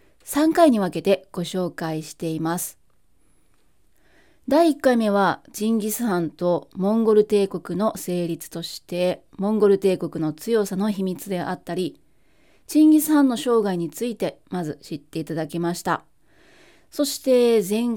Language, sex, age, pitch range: Japanese, female, 30-49, 180-240 Hz